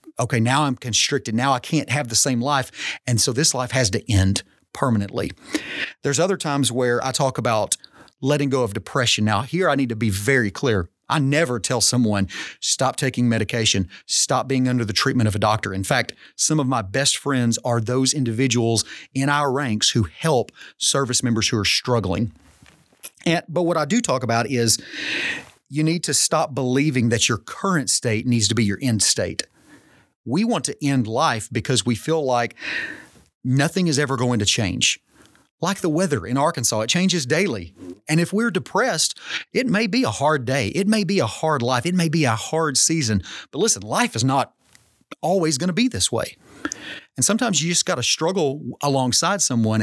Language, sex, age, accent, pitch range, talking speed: English, male, 30-49, American, 115-155 Hz, 195 wpm